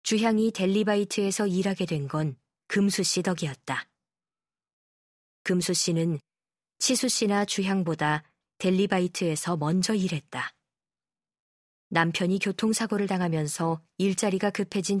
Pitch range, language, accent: 160-205 Hz, Korean, native